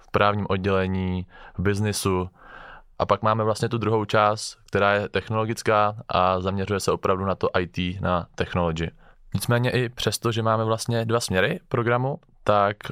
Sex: male